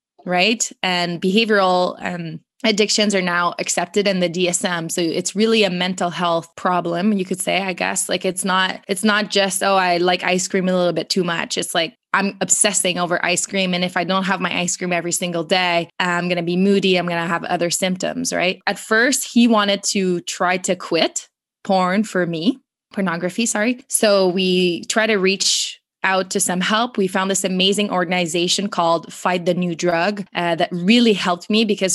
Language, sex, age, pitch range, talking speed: English, female, 20-39, 175-200 Hz, 200 wpm